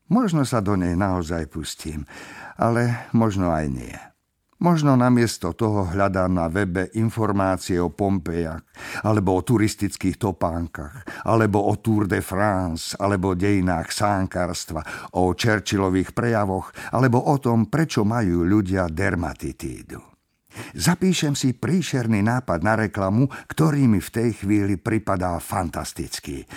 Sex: male